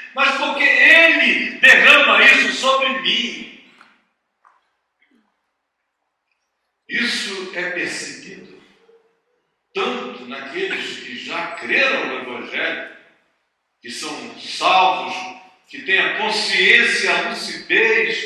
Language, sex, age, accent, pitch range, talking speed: Portuguese, male, 60-79, Brazilian, 245-310 Hz, 80 wpm